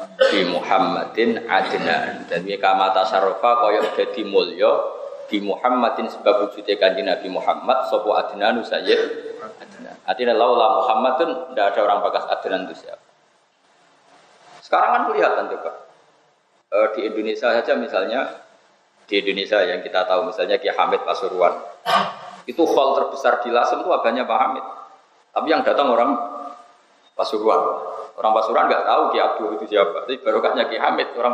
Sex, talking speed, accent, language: male, 140 wpm, native, Indonesian